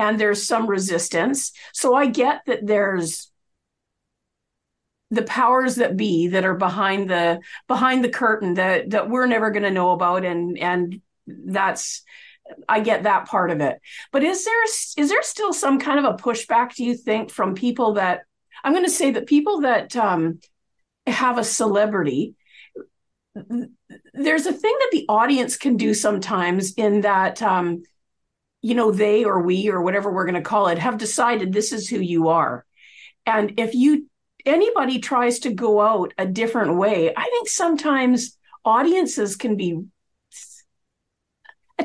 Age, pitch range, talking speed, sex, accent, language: 50-69, 195-275 Hz, 160 wpm, female, American, English